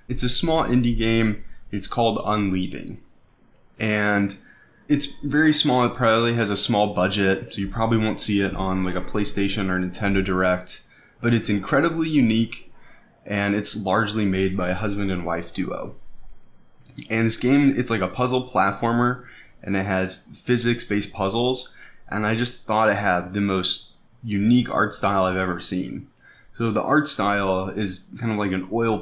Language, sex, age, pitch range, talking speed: English, male, 20-39, 95-115 Hz, 170 wpm